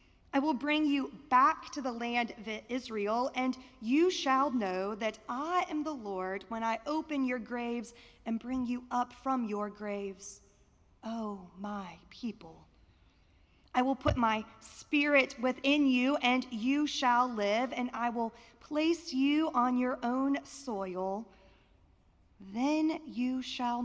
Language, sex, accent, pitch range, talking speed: English, female, American, 195-270 Hz, 145 wpm